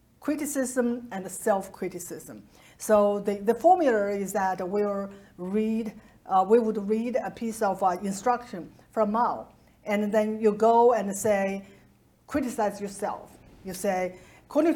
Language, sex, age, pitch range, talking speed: English, female, 50-69, 195-245 Hz, 135 wpm